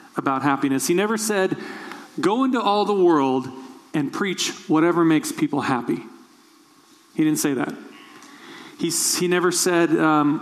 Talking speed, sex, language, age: 145 wpm, male, English, 40-59